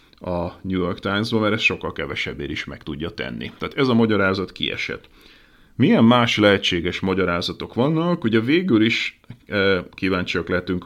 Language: Hungarian